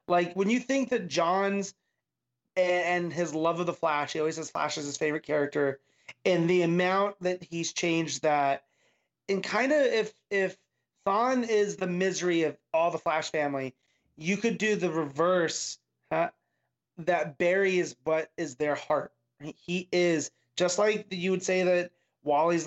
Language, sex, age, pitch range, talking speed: English, male, 30-49, 140-180 Hz, 165 wpm